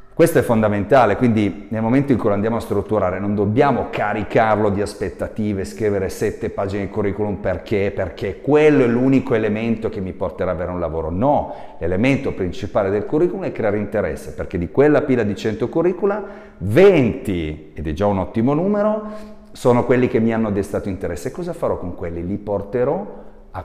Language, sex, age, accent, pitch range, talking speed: Italian, male, 40-59, native, 95-130 Hz, 185 wpm